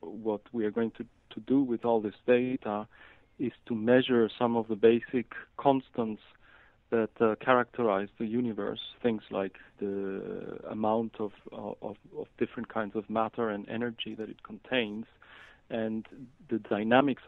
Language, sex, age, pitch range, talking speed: English, male, 40-59, 110-125 Hz, 145 wpm